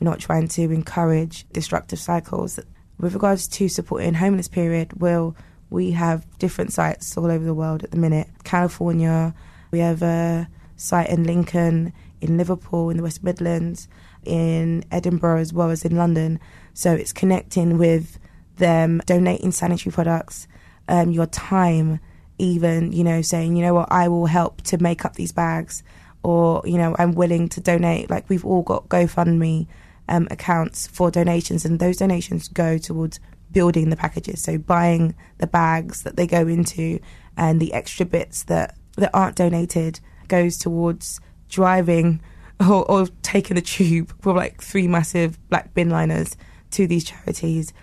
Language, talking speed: English, 160 wpm